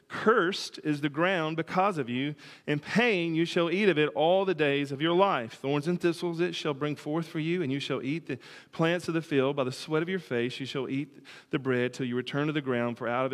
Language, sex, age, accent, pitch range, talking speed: English, male, 40-59, American, 135-180 Hz, 260 wpm